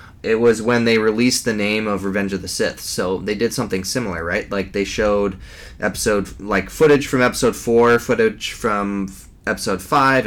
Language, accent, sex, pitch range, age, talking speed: English, American, male, 95-105 Hz, 20-39, 180 wpm